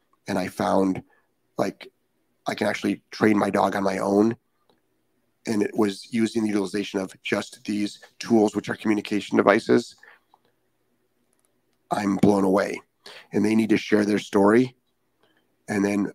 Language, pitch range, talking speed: English, 100-115 Hz, 145 wpm